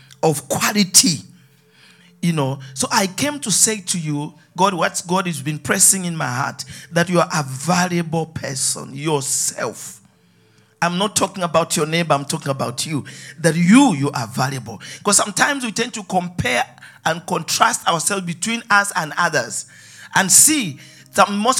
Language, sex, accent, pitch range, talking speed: English, male, Nigerian, 155-220 Hz, 160 wpm